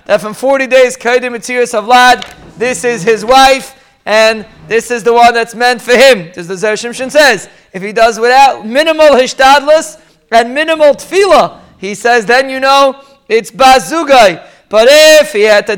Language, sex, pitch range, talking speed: English, male, 230-275 Hz, 165 wpm